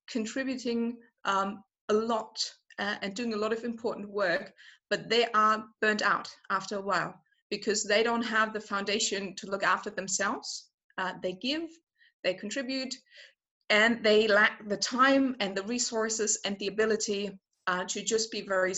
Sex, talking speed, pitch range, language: female, 165 wpm, 200-240 Hz, English